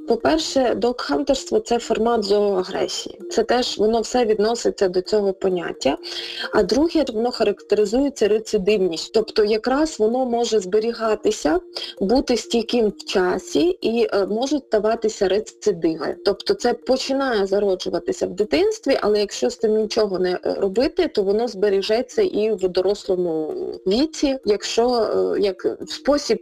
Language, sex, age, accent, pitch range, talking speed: Ukrainian, female, 20-39, native, 195-255 Hz, 125 wpm